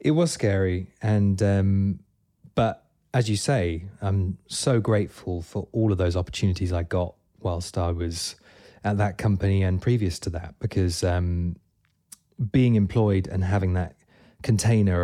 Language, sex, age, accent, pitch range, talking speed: English, male, 20-39, British, 85-105 Hz, 150 wpm